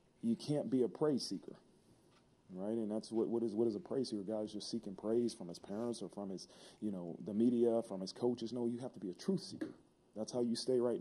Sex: male